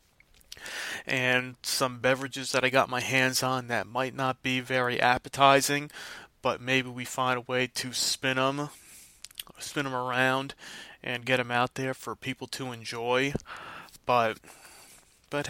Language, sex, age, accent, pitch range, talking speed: English, male, 20-39, American, 125-135 Hz, 145 wpm